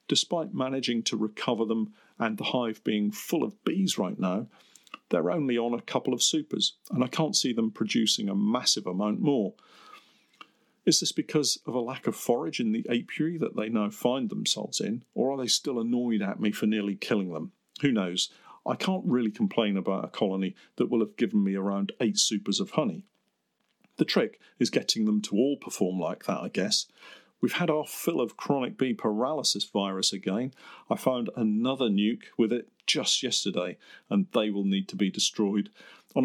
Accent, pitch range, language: British, 105-165 Hz, English